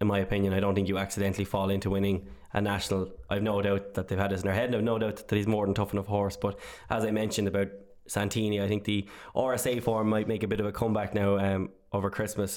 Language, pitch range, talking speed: English, 100-110 Hz, 265 wpm